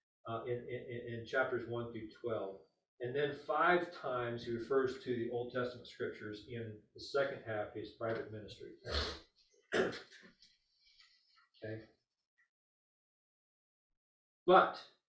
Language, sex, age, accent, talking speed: English, male, 40-59, American, 115 wpm